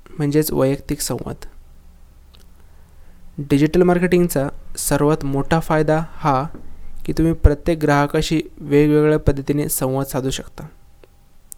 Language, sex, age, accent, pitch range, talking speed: English, male, 20-39, Indian, 130-155 Hz, 95 wpm